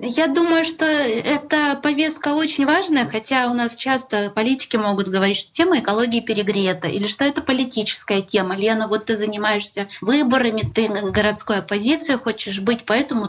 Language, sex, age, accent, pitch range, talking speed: Russian, female, 20-39, native, 200-260 Hz, 155 wpm